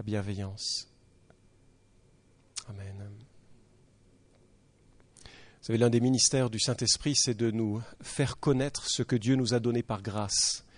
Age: 40-59